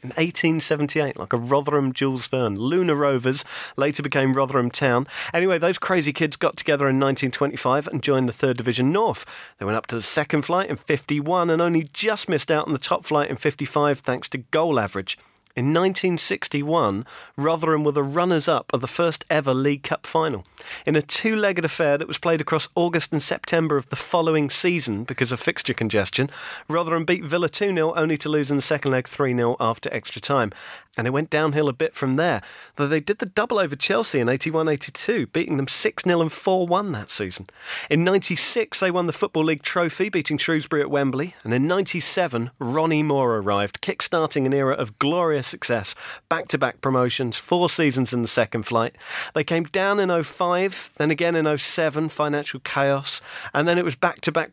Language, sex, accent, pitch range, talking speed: English, male, British, 135-170 Hz, 185 wpm